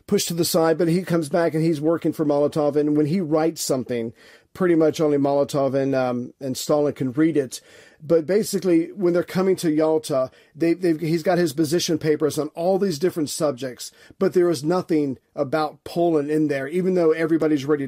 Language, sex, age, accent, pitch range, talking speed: English, male, 40-59, American, 145-165 Hz, 200 wpm